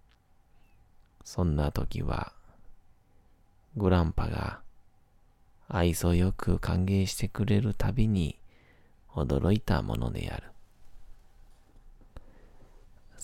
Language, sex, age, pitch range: Japanese, male, 40-59, 90-105 Hz